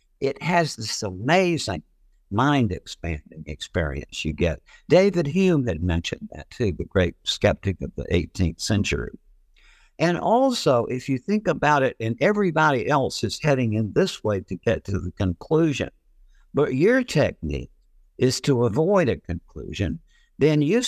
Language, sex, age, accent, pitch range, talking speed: English, male, 60-79, American, 100-160 Hz, 145 wpm